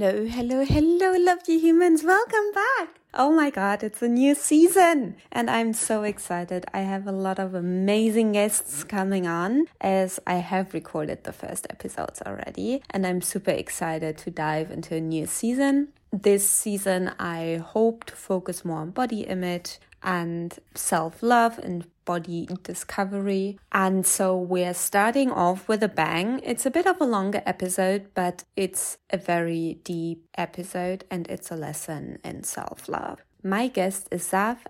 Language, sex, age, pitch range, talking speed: English, female, 20-39, 175-230 Hz, 155 wpm